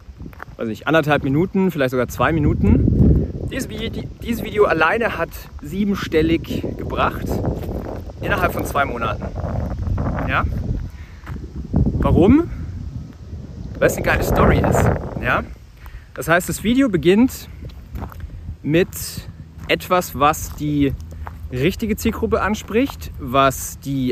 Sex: male